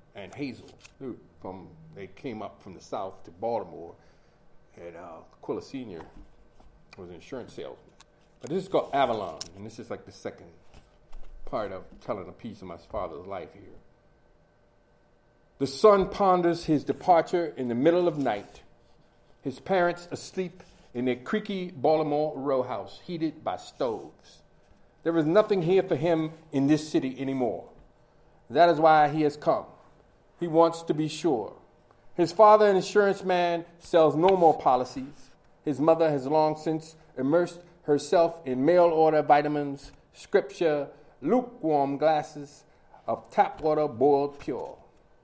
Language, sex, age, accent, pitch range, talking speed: English, male, 40-59, American, 145-180 Hz, 145 wpm